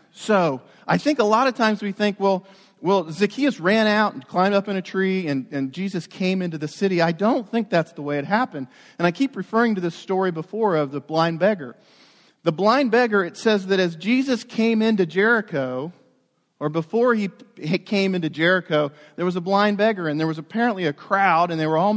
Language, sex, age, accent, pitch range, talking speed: English, male, 40-59, American, 155-215 Hz, 215 wpm